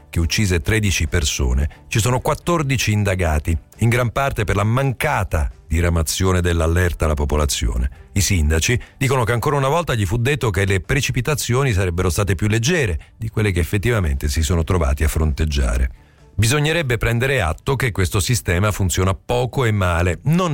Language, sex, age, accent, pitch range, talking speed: Italian, male, 50-69, native, 80-110 Hz, 160 wpm